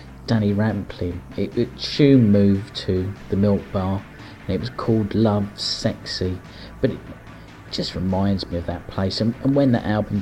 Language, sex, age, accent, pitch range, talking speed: English, male, 40-59, British, 90-115 Hz, 170 wpm